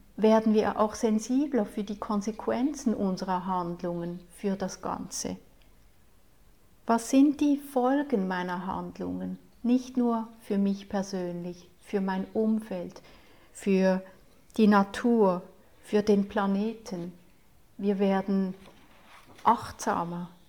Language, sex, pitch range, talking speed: English, female, 195-230 Hz, 105 wpm